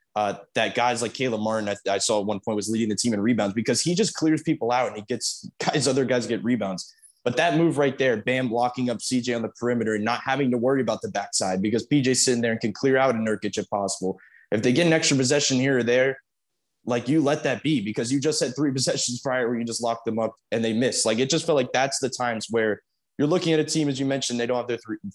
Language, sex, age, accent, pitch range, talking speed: English, male, 20-39, American, 110-130 Hz, 275 wpm